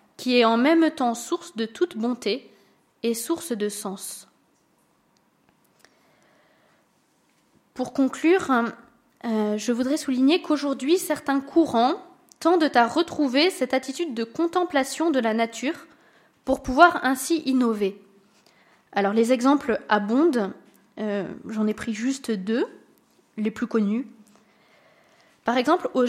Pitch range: 225-300 Hz